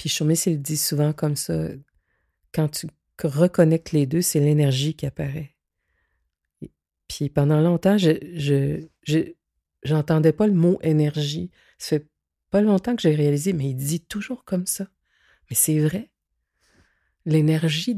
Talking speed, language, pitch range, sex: 145 wpm, French, 150-180 Hz, female